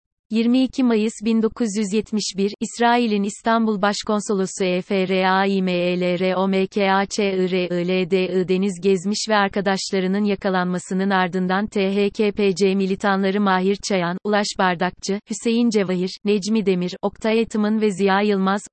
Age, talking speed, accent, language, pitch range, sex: 30-49, 95 wpm, native, Turkish, 190-220 Hz, female